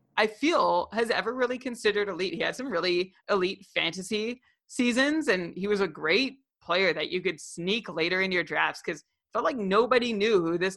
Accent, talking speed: American, 200 wpm